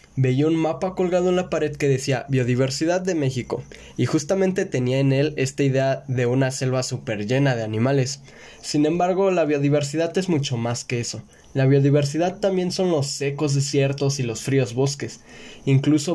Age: 20-39